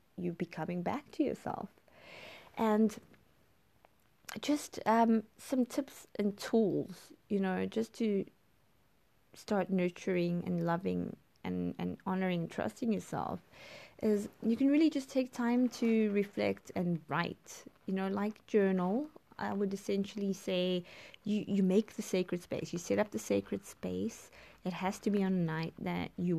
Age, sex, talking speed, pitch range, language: 20-39, female, 150 wpm, 175-225 Hz, English